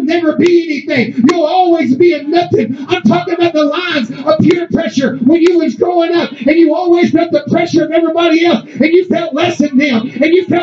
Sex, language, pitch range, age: male, English, 305-360 Hz, 40-59